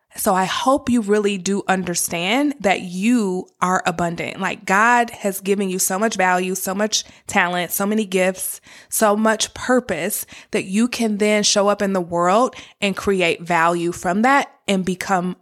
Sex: female